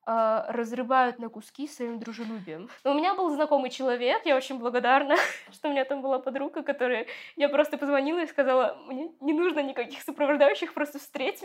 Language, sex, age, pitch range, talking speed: Russian, female, 20-39, 215-270 Hz, 170 wpm